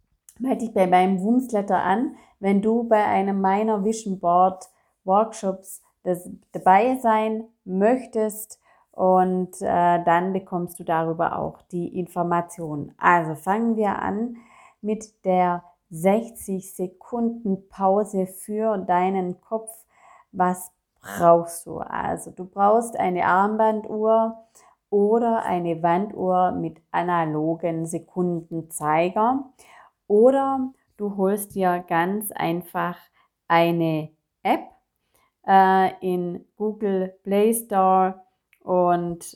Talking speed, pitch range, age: 100 wpm, 170-210 Hz, 30-49